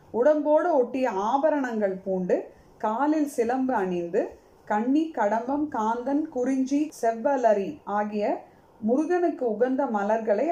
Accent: native